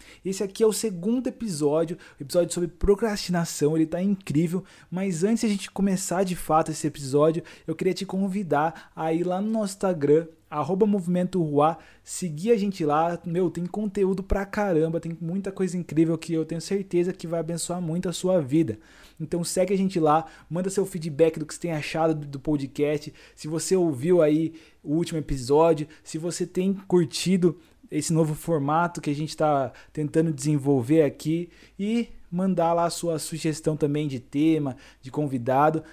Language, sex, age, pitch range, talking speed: Portuguese, male, 20-39, 155-185 Hz, 175 wpm